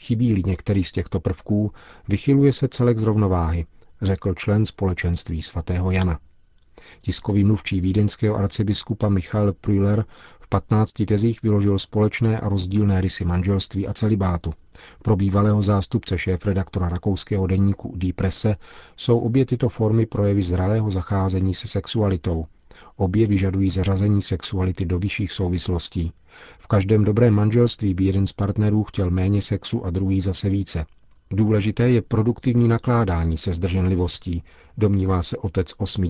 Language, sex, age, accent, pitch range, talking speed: Czech, male, 40-59, native, 95-110 Hz, 135 wpm